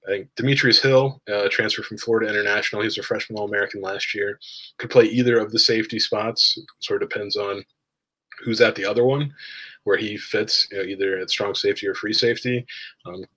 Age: 20-39